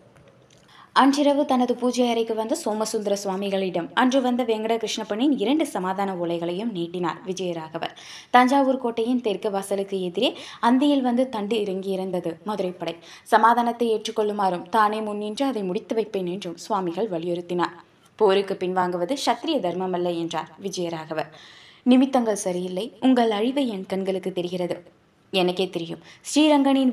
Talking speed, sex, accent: 115 wpm, female, native